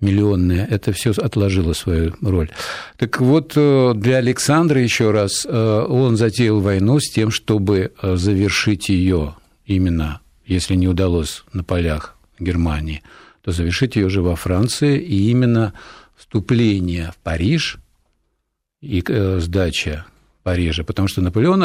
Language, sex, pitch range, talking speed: Russian, male, 90-115 Hz, 120 wpm